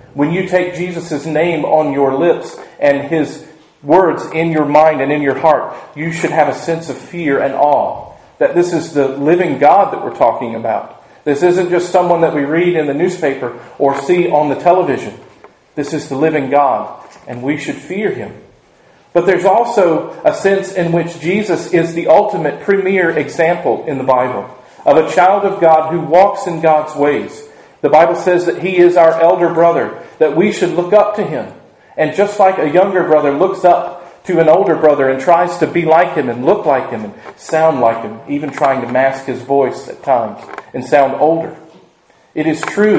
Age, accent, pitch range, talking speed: 40-59, American, 150-175 Hz, 200 wpm